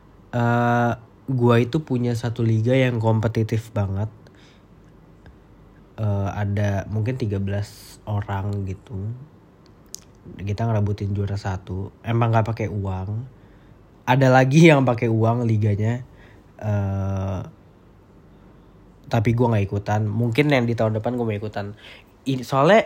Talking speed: 115 wpm